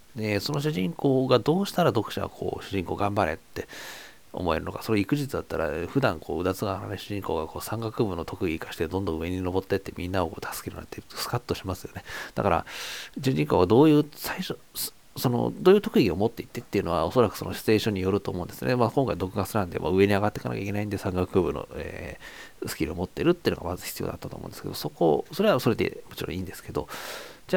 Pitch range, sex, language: 90-135 Hz, male, Japanese